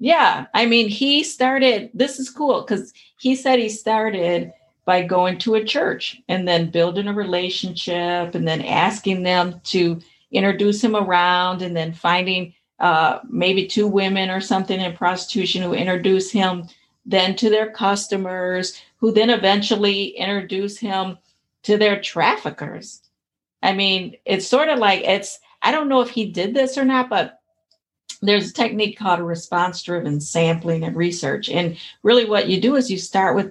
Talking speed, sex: 165 wpm, female